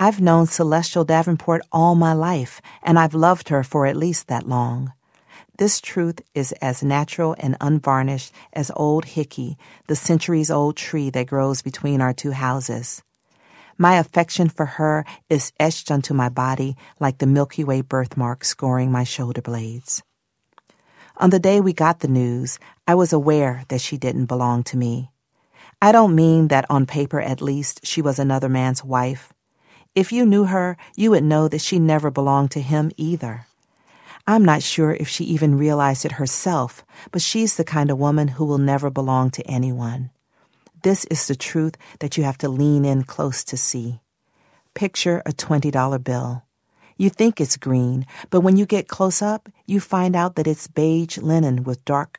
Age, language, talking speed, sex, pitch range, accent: 40-59, English, 175 wpm, female, 130-165 Hz, American